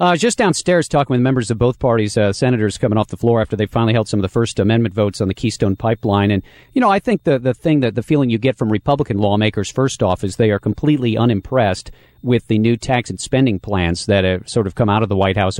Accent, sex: American, male